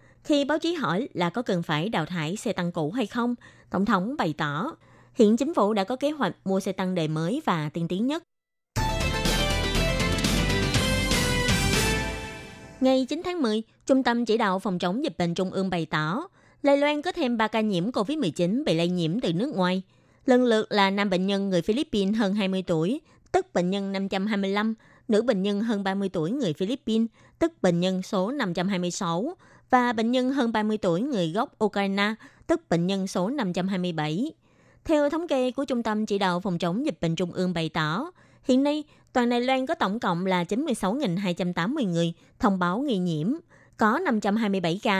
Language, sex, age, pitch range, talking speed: Vietnamese, female, 20-39, 180-245 Hz, 190 wpm